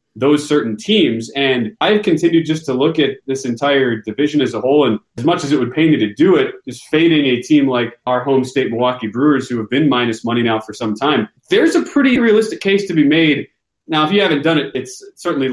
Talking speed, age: 240 wpm, 30-49